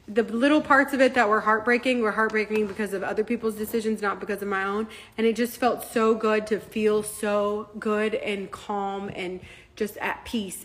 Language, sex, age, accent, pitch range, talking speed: English, female, 30-49, American, 210-275 Hz, 205 wpm